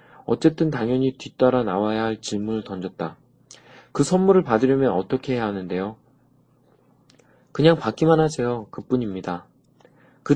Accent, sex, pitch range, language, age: native, male, 105-155 Hz, Korean, 20-39